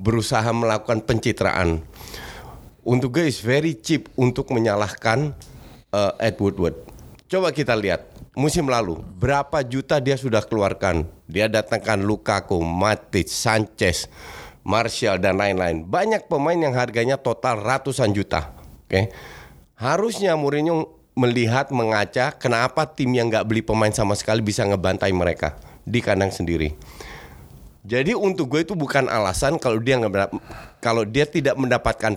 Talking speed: 130 wpm